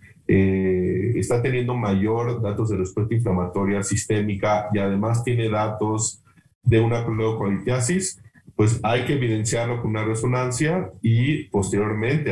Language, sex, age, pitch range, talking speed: Spanish, male, 40-59, 100-125 Hz, 120 wpm